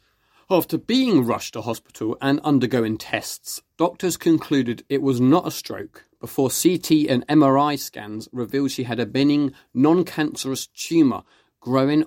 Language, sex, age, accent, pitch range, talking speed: English, male, 30-49, British, 115-155 Hz, 145 wpm